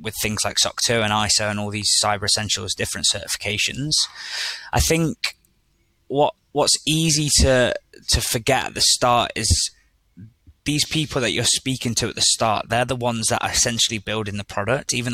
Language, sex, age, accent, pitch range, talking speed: English, male, 20-39, British, 105-120 Hz, 175 wpm